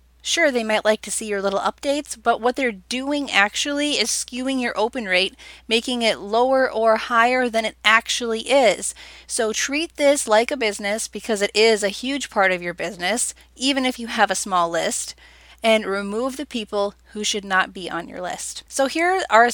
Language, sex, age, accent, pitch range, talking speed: English, female, 20-39, American, 195-250 Hz, 195 wpm